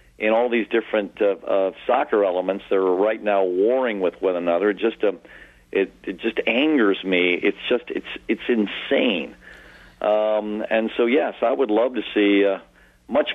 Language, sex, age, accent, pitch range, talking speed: English, male, 50-69, American, 95-115 Hz, 175 wpm